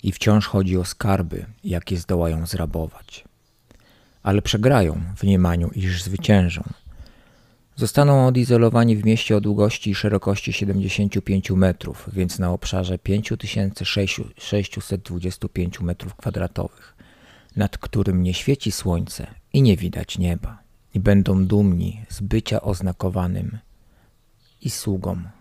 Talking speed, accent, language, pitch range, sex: 110 wpm, native, Polish, 95-110 Hz, male